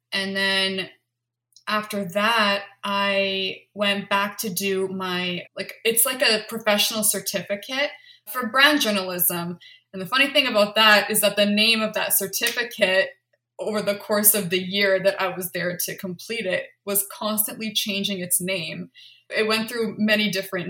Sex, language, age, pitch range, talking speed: female, English, 20-39, 185-220 Hz, 160 wpm